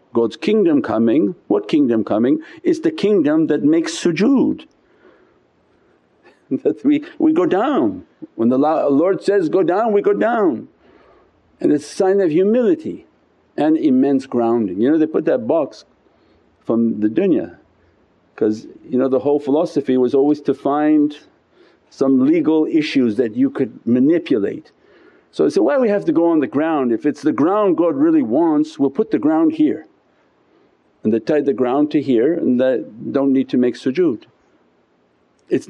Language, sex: English, male